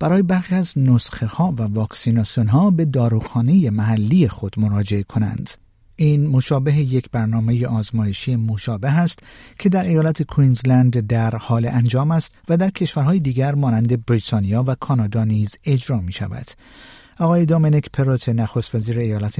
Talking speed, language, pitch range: 145 wpm, Persian, 110-150 Hz